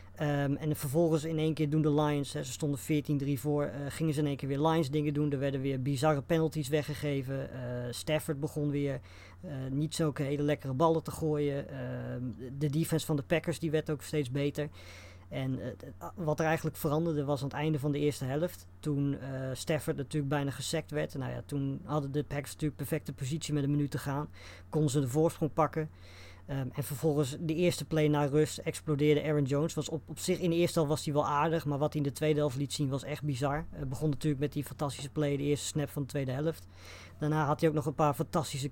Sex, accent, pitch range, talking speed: female, Dutch, 140-155 Hz, 230 wpm